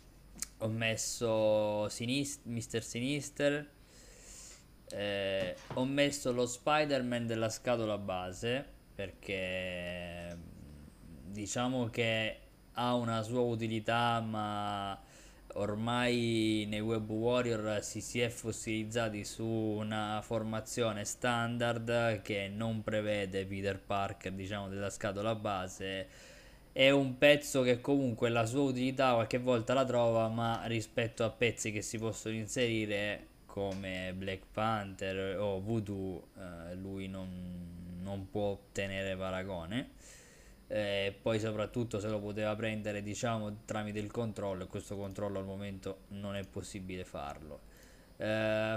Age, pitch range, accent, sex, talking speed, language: 20-39, 100-115 Hz, native, male, 120 wpm, Italian